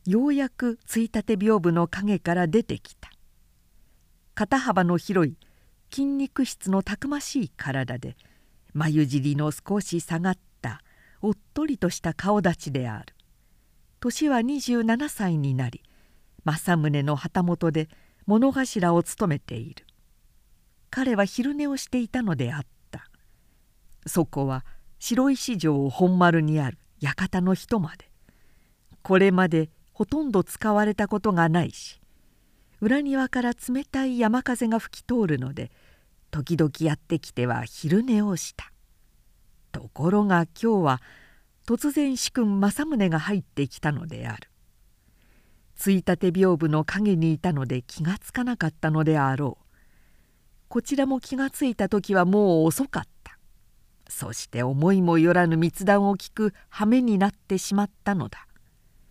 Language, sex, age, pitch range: Japanese, female, 50-69, 155-230 Hz